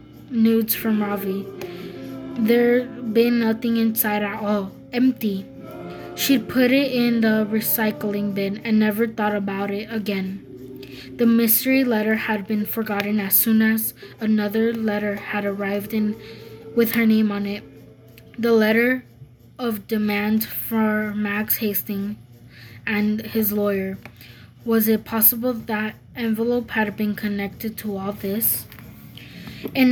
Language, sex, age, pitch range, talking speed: English, female, 10-29, 205-235 Hz, 130 wpm